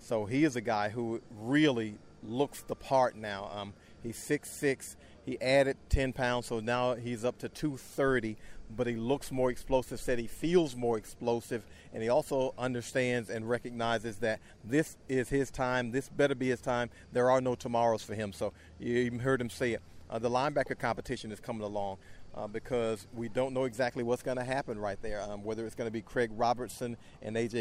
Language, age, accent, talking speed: English, 40-59, American, 200 wpm